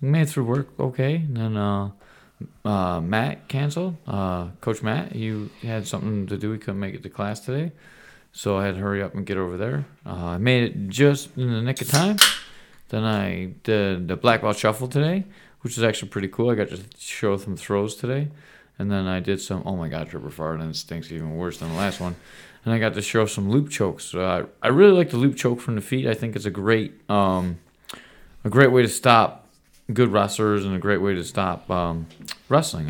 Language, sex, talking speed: English, male, 225 wpm